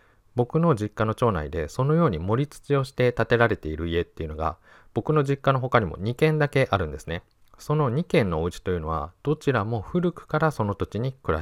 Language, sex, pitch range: Japanese, male, 85-115 Hz